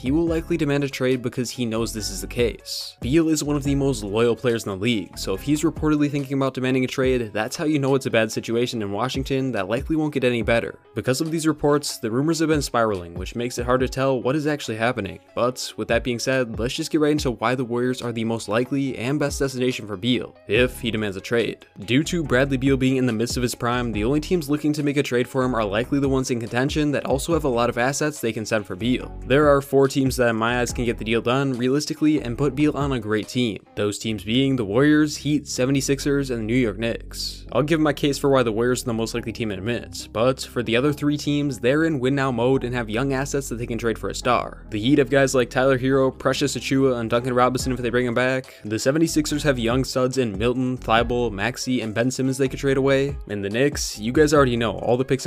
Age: 20-39